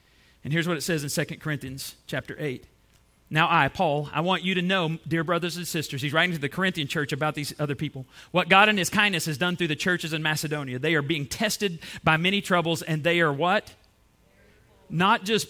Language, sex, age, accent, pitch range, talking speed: English, male, 40-59, American, 155-205 Hz, 220 wpm